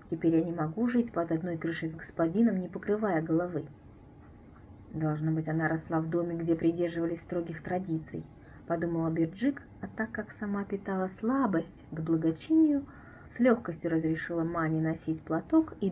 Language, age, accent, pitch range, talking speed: Russian, 30-49, native, 160-235 Hz, 155 wpm